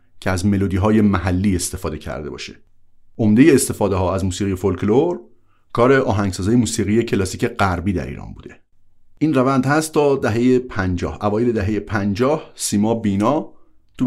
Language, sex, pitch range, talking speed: Persian, male, 95-125 Hz, 135 wpm